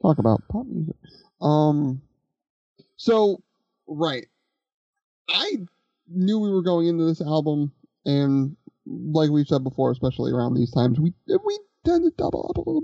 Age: 30-49